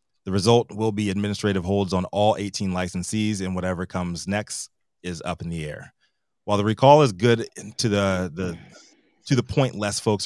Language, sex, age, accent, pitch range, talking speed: English, male, 30-49, American, 90-105 Hz, 185 wpm